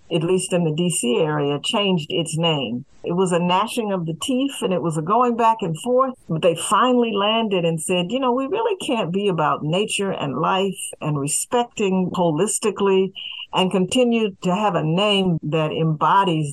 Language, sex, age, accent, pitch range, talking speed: English, female, 60-79, American, 160-210 Hz, 185 wpm